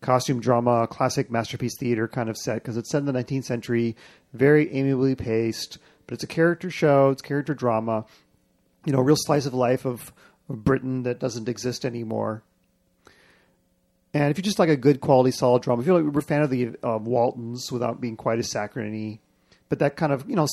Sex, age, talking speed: male, 40-59, 205 wpm